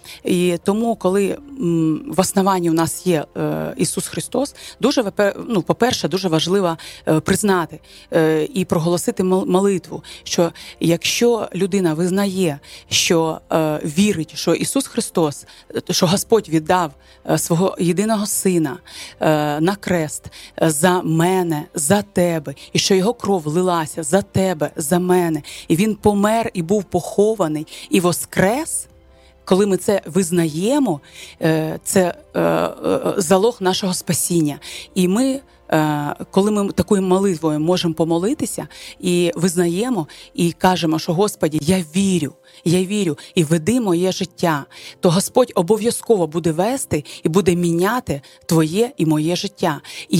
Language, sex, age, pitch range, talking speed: Ukrainian, female, 30-49, 165-200 Hz, 120 wpm